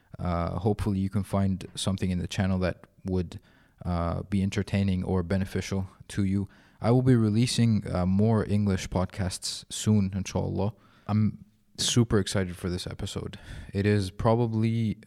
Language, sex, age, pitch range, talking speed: Arabic, male, 30-49, 95-105 Hz, 145 wpm